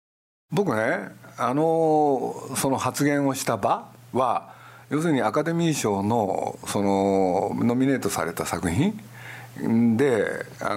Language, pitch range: Japanese, 105-150 Hz